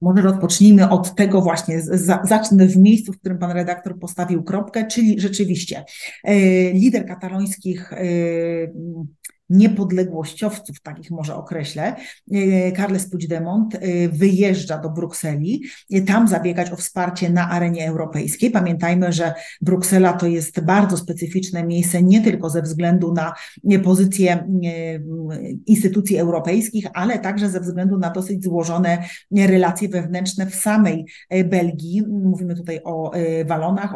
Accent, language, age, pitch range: native, Polish, 30-49, 175-200 Hz